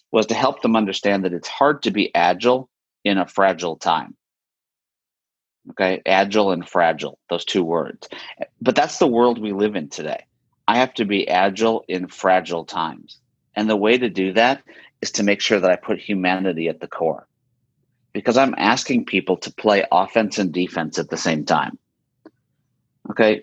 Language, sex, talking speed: English, male, 175 wpm